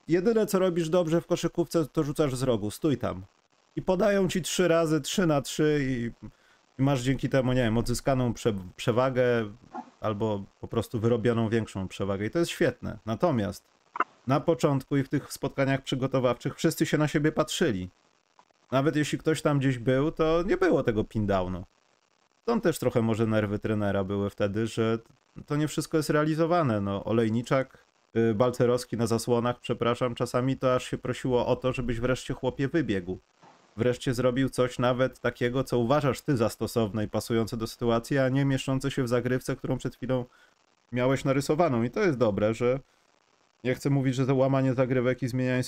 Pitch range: 115-150 Hz